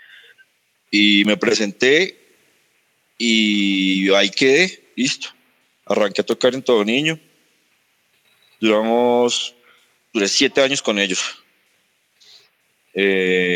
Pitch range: 95-120 Hz